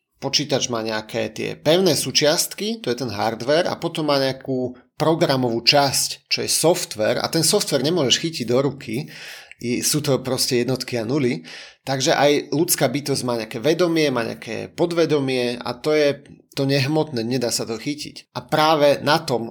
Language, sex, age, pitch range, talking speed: Slovak, male, 30-49, 125-145 Hz, 170 wpm